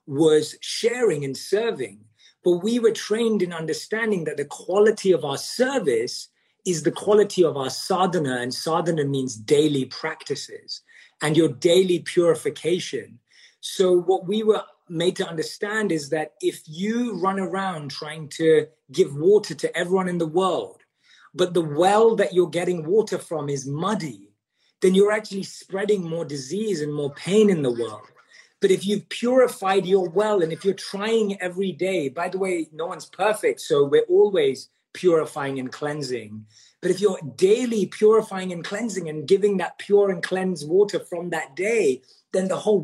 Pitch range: 155-210 Hz